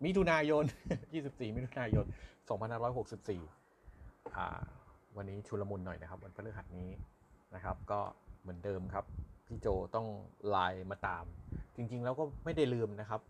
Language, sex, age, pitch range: Thai, male, 30-49, 95-145 Hz